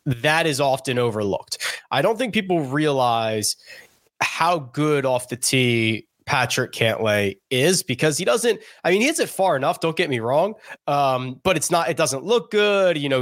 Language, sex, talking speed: English, male, 185 wpm